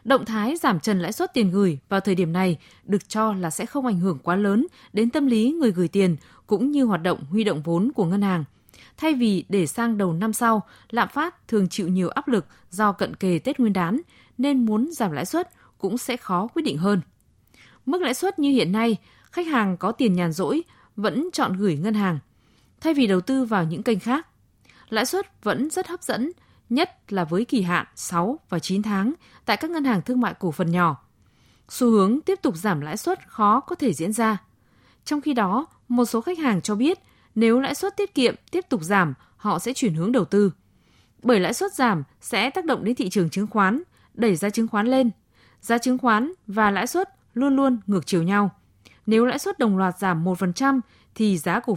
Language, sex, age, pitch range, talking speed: Vietnamese, female, 20-39, 185-260 Hz, 220 wpm